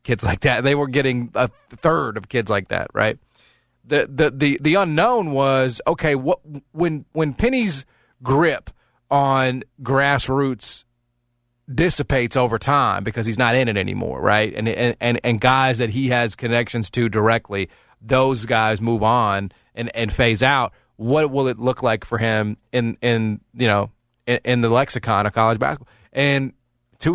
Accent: American